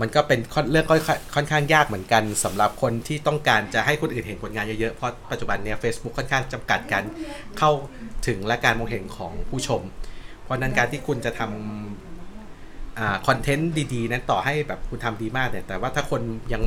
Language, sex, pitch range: Thai, male, 105-135 Hz